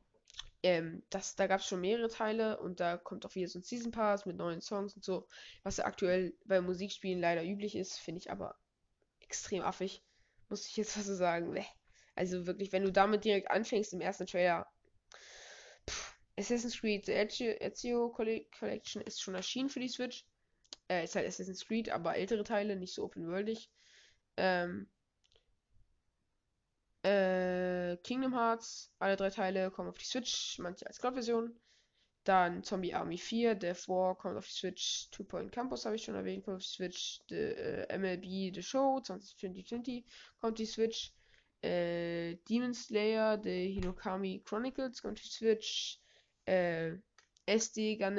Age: 20-39